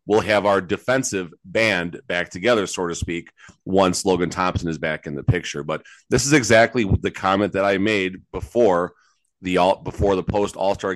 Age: 30-49